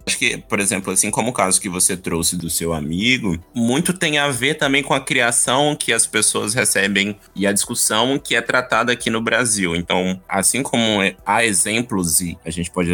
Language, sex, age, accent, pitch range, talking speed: Portuguese, male, 20-39, Brazilian, 95-125 Hz, 205 wpm